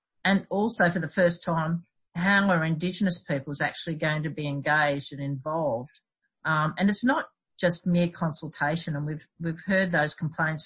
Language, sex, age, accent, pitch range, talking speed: English, female, 50-69, Australian, 150-180 Hz, 170 wpm